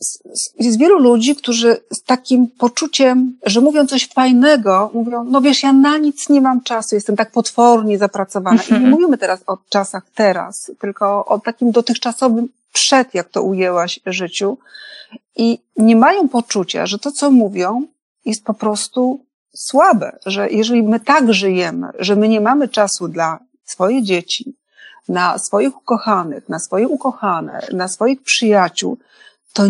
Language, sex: Polish, female